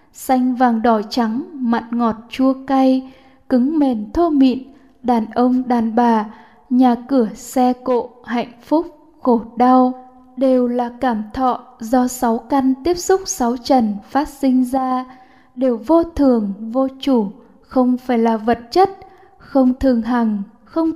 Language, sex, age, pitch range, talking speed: Vietnamese, female, 10-29, 240-270 Hz, 150 wpm